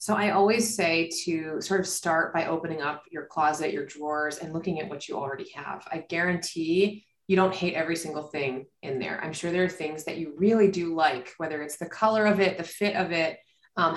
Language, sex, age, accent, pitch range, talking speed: English, female, 20-39, American, 160-195 Hz, 230 wpm